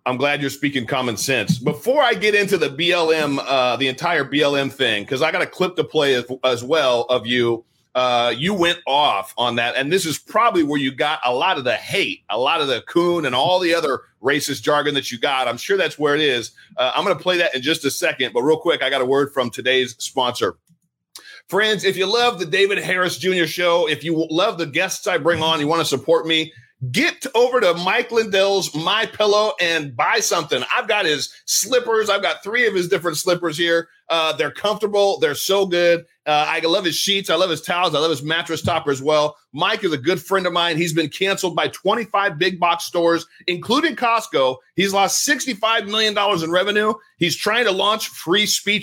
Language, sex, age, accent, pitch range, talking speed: English, male, 40-59, American, 150-190 Hz, 220 wpm